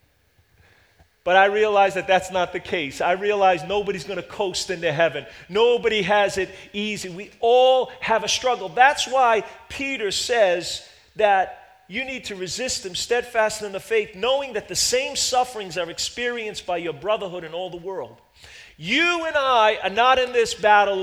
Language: English